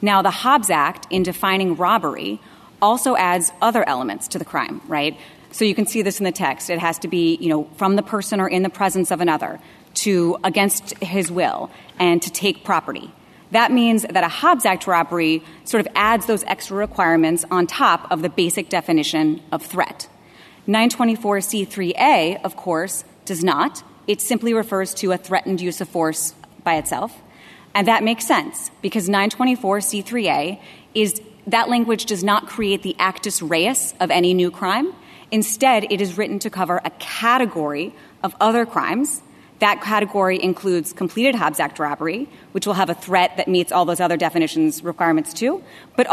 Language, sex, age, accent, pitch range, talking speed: English, female, 30-49, American, 175-220 Hz, 175 wpm